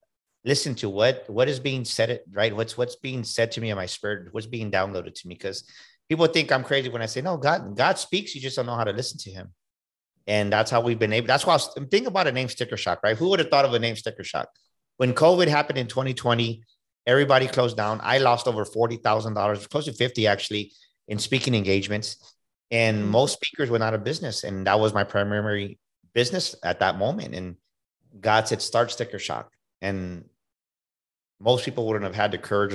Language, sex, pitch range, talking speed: English, male, 105-130 Hz, 215 wpm